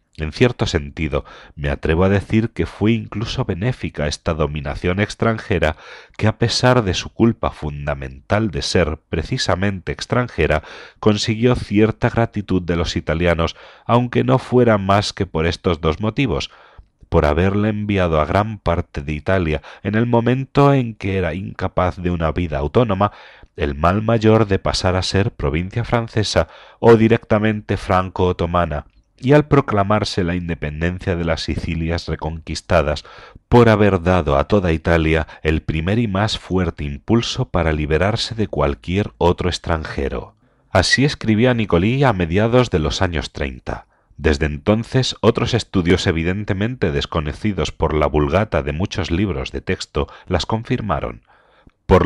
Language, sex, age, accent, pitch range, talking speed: Spanish, male, 40-59, Spanish, 80-110 Hz, 145 wpm